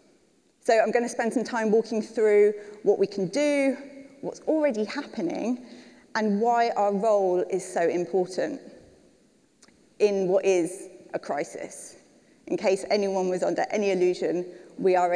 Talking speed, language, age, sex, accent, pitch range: 145 wpm, English, 30-49, female, British, 190-245 Hz